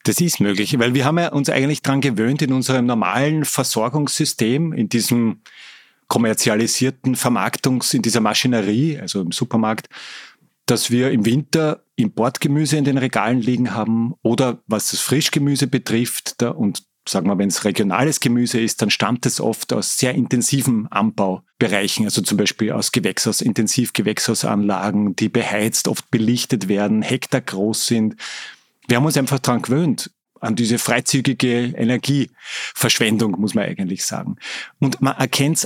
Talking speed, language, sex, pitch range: 150 wpm, German, male, 115-140 Hz